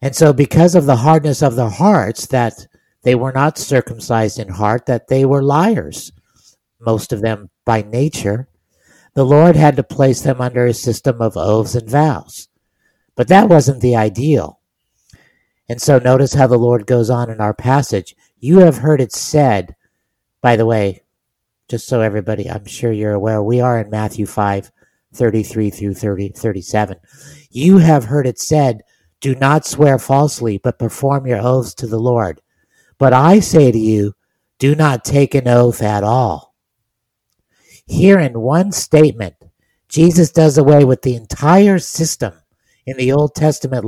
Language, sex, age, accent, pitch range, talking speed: English, male, 50-69, American, 110-145 Hz, 165 wpm